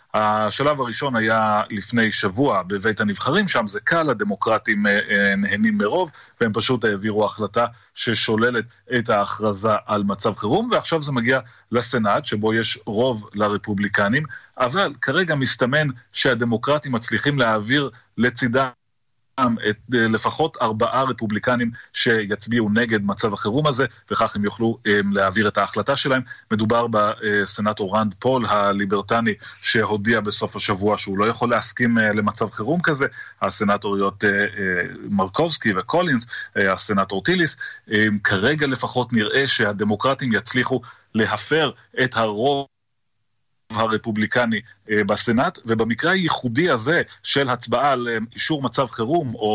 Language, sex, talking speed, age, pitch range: Hebrew, male, 115 wpm, 30-49, 105-130 Hz